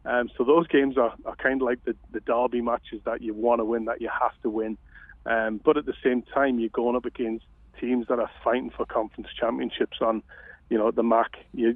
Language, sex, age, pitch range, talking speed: English, male, 30-49, 115-130 Hz, 235 wpm